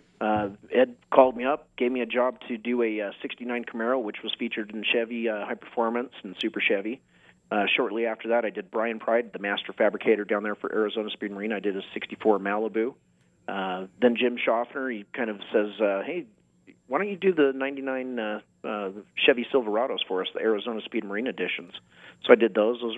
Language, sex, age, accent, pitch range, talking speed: English, male, 30-49, American, 105-120 Hz, 210 wpm